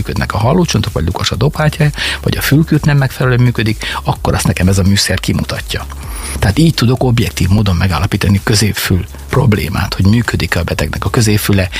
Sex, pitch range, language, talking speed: male, 95-115 Hz, Hungarian, 175 wpm